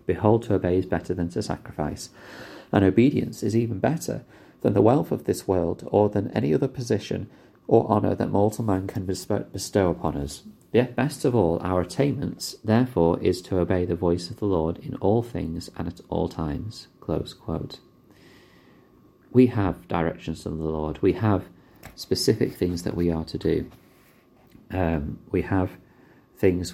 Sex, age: male, 30-49